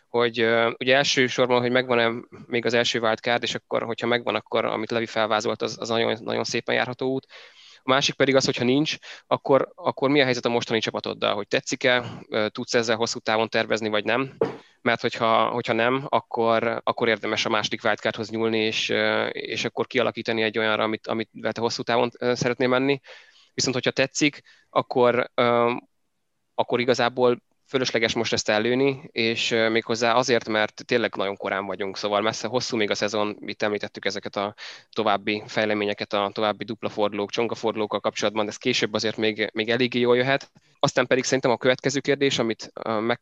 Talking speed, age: 170 wpm, 20-39